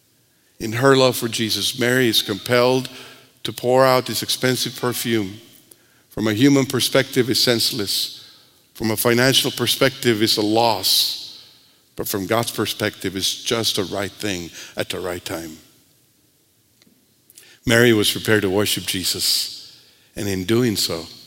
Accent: American